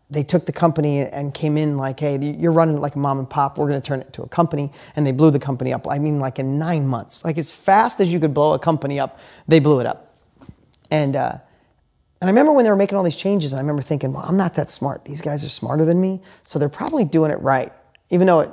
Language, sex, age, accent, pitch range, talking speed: English, male, 30-49, American, 135-160 Hz, 275 wpm